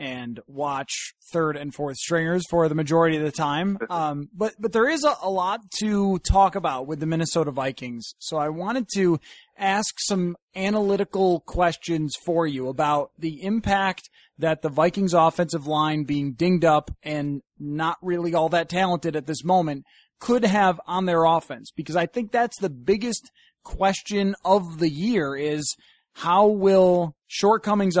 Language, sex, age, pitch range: English, male, 20-39, 150-195 Hz